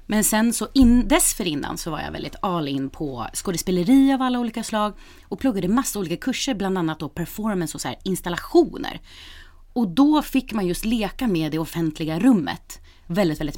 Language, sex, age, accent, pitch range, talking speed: Swedish, female, 30-49, native, 155-225 Hz, 195 wpm